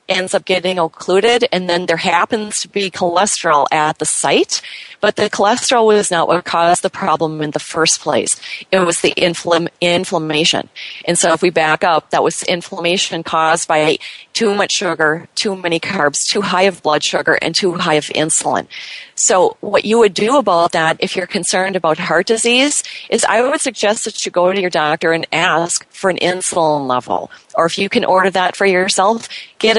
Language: English